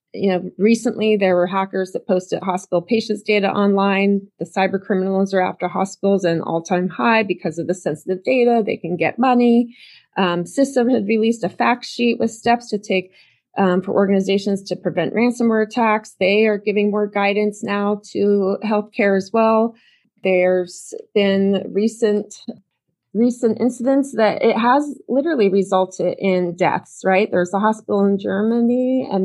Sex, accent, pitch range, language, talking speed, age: female, American, 190-235 Hz, English, 160 wpm, 20-39